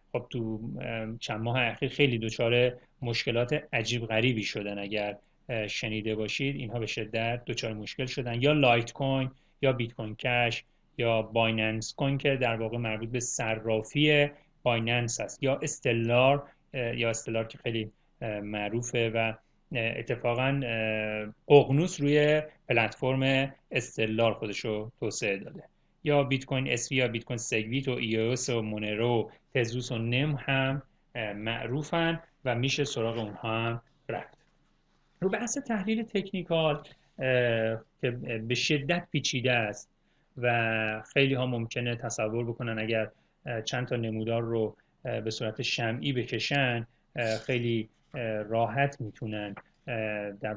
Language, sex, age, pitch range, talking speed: Persian, male, 30-49, 110-135 Hz, 130 wpm